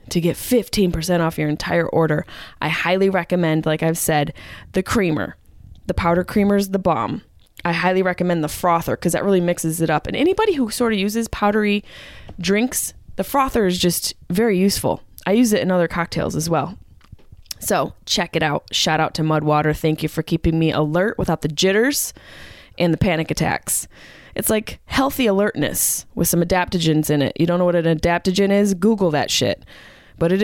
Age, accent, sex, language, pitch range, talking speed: 20-39, American, female, English, 160-195 Hz, 190 wpm